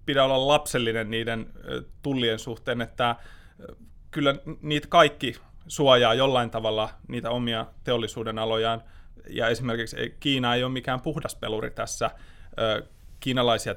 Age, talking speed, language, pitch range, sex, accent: 20-39, 120 wpm, Finnish, 115-130 Hz, male, native